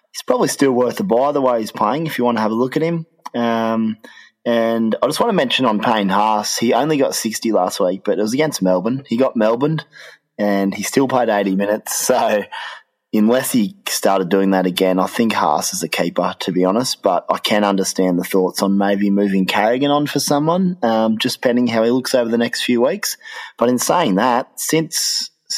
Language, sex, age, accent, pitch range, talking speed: English, male, 20-39, Australian, 95-125 Hz, 220 wpm